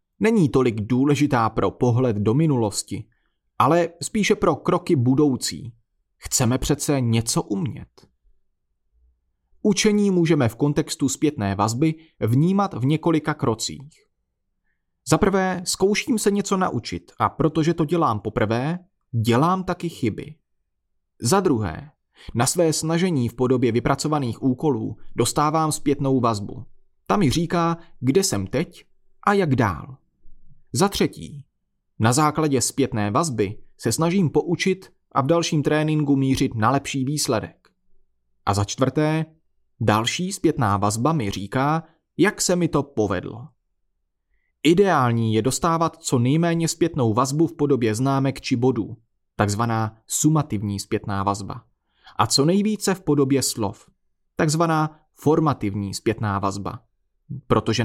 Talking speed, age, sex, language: 120 wpm, 30-49, male, Czech